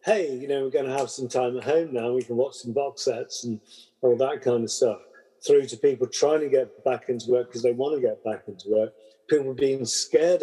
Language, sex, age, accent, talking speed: English, male, 50-69, British, 255 wpm